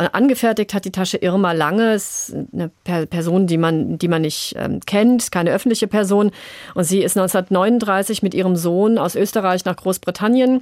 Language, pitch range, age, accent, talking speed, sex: German, 180-215 Hz, 40-59, German, 170 wpm, female